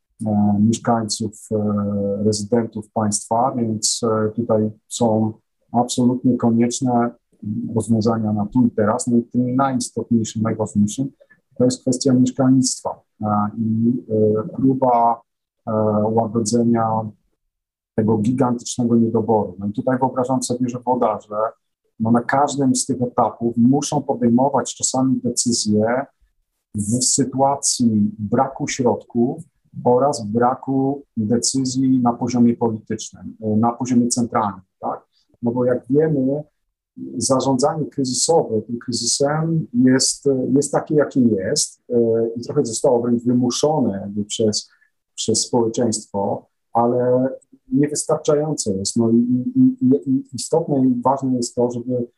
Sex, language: male, Polish